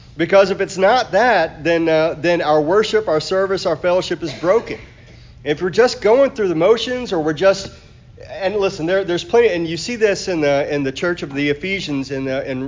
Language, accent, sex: English, American, male